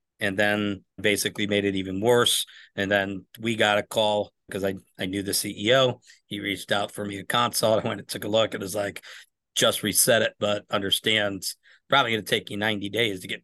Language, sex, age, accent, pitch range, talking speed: English, male, 40-59, American, 100-115 Hz, 220 wpm